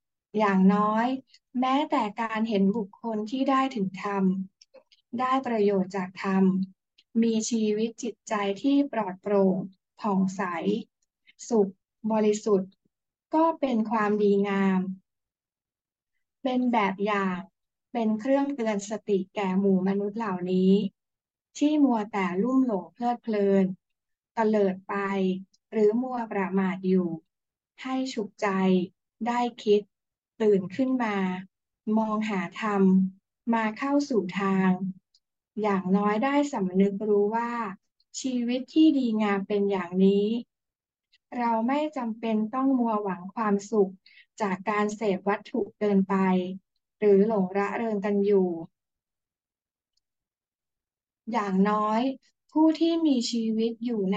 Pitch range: 195-235 Hz